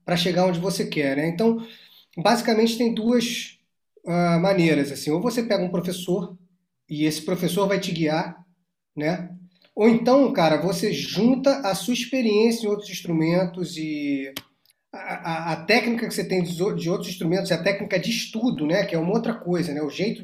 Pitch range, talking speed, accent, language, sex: 175-210 Hz, 185 wpm, Brazilian, Portuguese, male